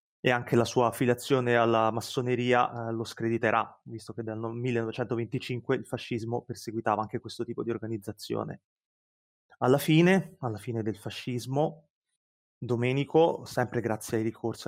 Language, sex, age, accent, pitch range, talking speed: Italian, male, 30-49, native, 115-130 Hz, 135 wpm